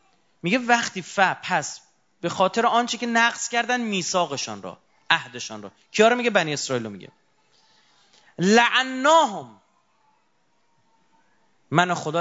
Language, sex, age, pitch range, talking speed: Persian, male, 30-49, 155-240 Hz, 115 wpm